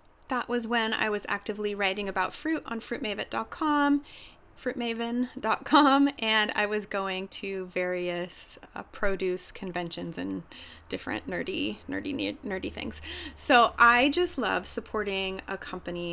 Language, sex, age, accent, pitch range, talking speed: English, female, 30-49, American, 205-275 Hz, 125 wpm